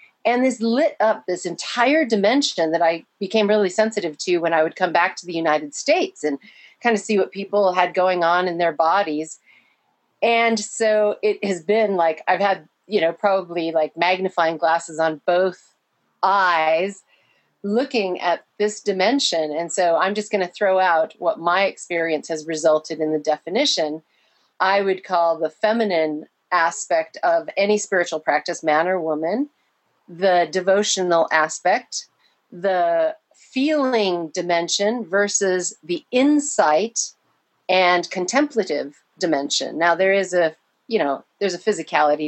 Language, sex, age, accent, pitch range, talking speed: English, female, 40-59, American, 160-210 Hz, 150 wpm